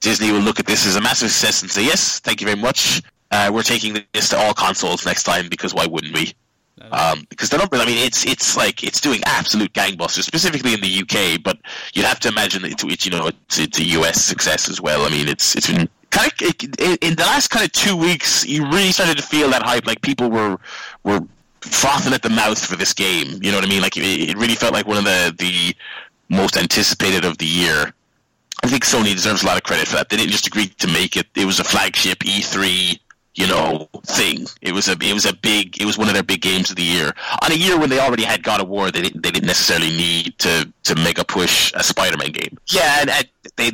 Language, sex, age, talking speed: English, male, 30-49, 245 wpm